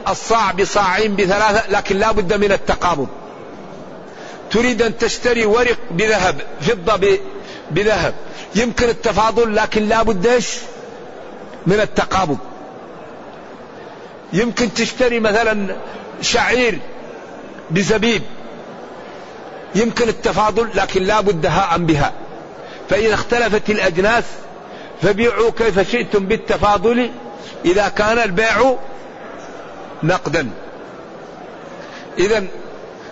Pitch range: 195-225 Hz